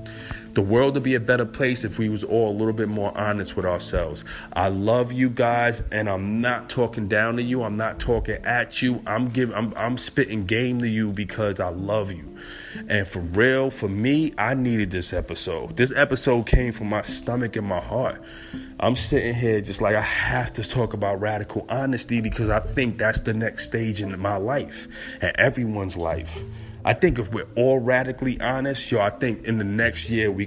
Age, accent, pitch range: 30-49, American, 105-125 Hz